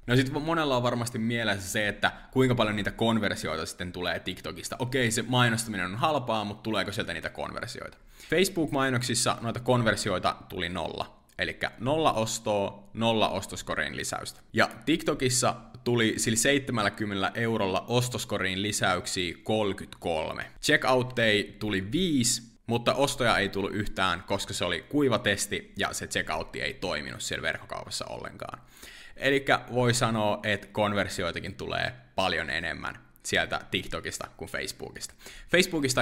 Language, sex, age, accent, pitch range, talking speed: Finnish, male, 20-39, native, 100-125 Hz, 130 wpm